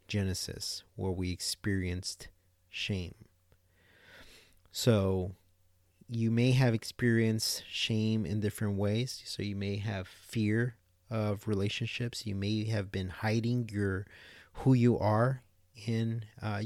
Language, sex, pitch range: English, male, 95-115 Hz